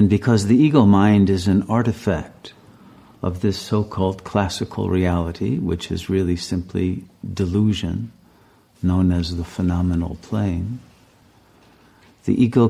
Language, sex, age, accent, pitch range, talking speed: English, male, 50-69, American, 90-110 Hz, 120 wpm